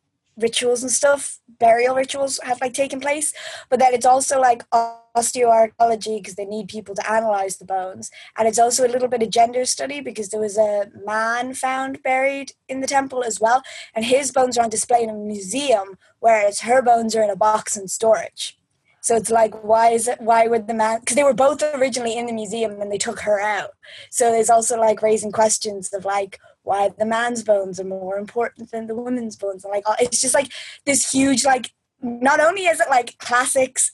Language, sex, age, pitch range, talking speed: English, female, 10-29, 215-260 Hz, 205 wpm